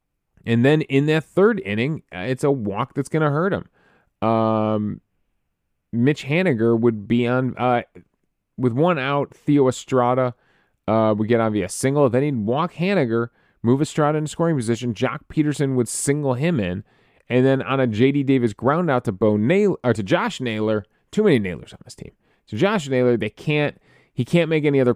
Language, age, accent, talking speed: English, 30-49, American, 190 wpm